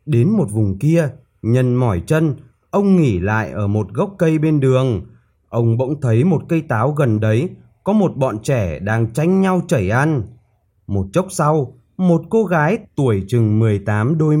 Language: Vietnamese